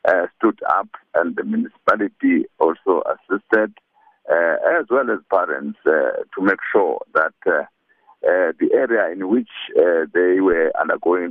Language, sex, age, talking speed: English, male, 60-79, 150 wpm